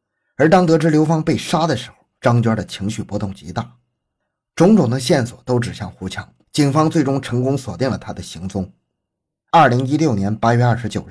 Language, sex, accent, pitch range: Chinese, male, native, 105-145 Hz